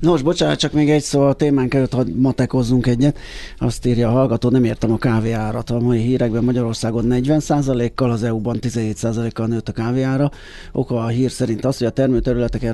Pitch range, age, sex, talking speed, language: 105-125 Hz, 30-49, male, 195 wpm, Hungarian